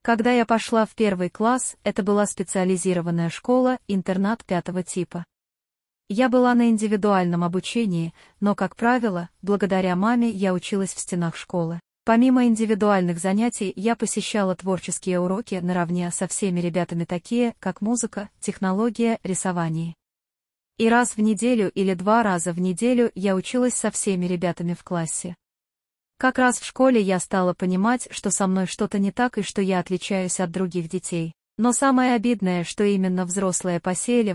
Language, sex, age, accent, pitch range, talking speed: Russian, female, 30-49, native, 180-220 Hz, 150 wpm